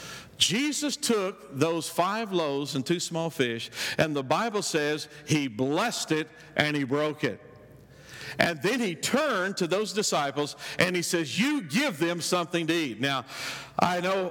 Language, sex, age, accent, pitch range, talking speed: English, male, 50-69, American, 155-195 Hz, 165 wpm